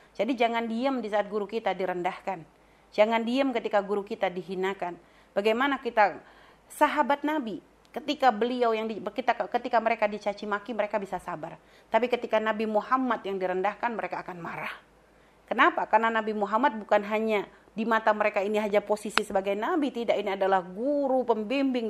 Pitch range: 210-280 Hz